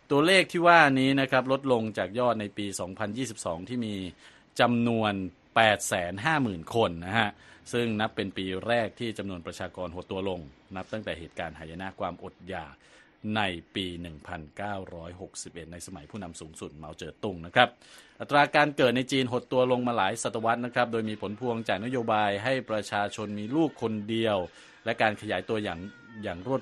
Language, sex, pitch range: Thai, male, 95-125 Hz